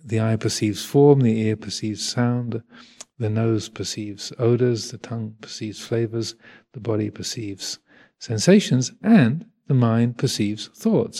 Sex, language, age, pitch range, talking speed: male, English, 50-69, 110-130 Hz, 135 wpm